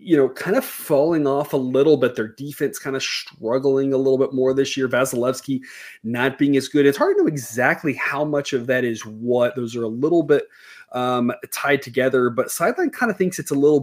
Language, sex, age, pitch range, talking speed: English, male, 20-39, 125-160 Hz, 225 wpm